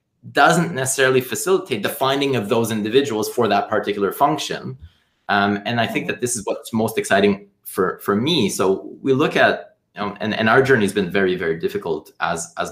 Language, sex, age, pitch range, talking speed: English, male, 20-39, 105-140 Hz, 190 wpm